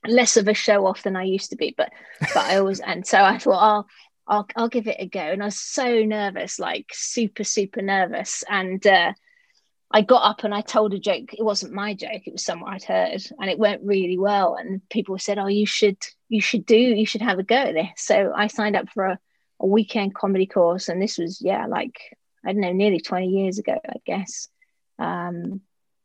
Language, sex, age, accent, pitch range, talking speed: English, female, 30-49, British, 195-225 Hz, 230 wpm